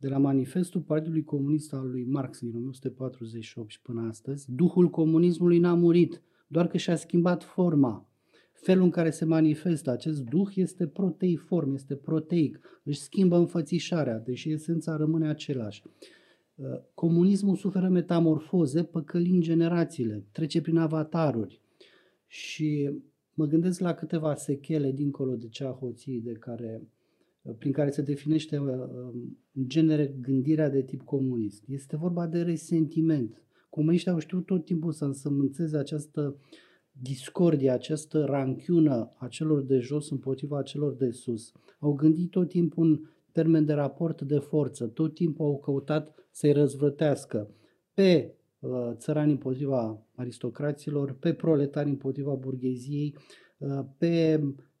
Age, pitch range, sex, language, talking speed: 30-49, 135-165 Hz, male, Romanian, 130 wpm